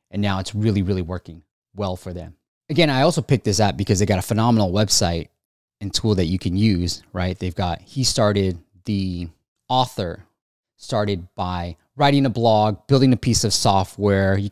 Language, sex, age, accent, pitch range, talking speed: English, male, 20-39, American, 95-120 Hz, 185 wpm